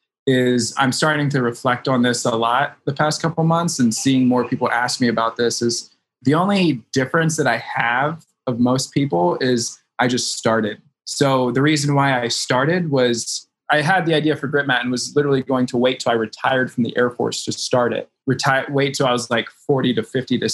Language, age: English, 20-39